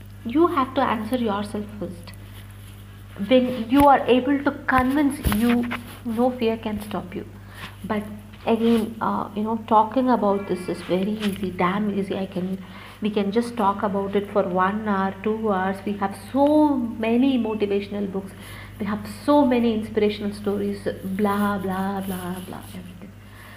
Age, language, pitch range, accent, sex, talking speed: 50-69, Tamil, 195-245 Hz, native, female, 155 wpm